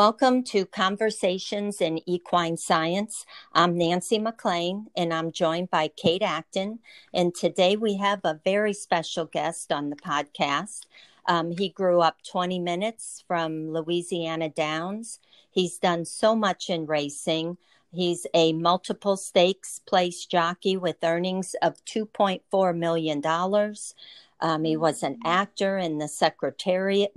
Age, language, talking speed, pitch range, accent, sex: 50-69, English, 135 wpm, 160-190 Hz, American, female